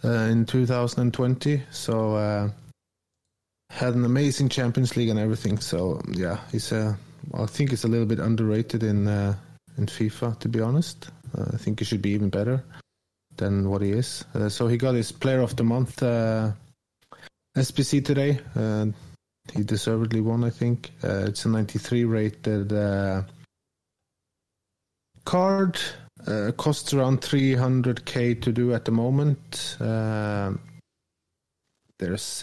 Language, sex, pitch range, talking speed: English, male, 105-130 Hz, 145 wpm